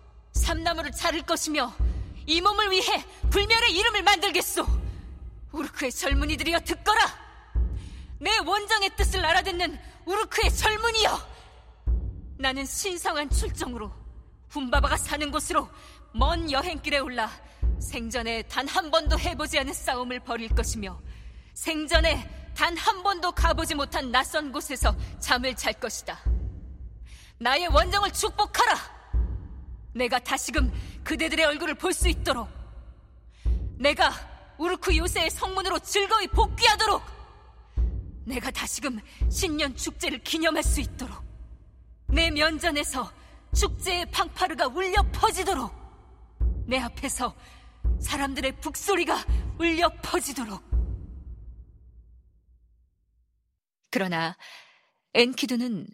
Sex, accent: female, native